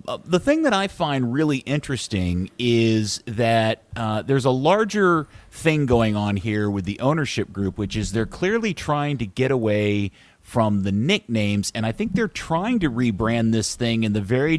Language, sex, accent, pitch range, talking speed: English, male, American, 105-150 Hz, 185 wpm